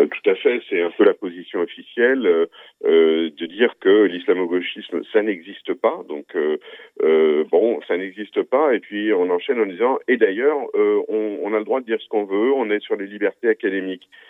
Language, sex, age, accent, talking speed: Italian, male, 40-59, French, 200 wpm